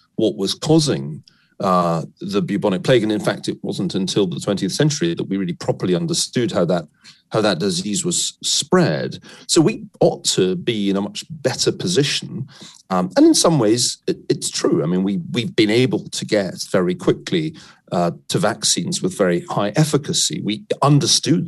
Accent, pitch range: British, 100-170 Hz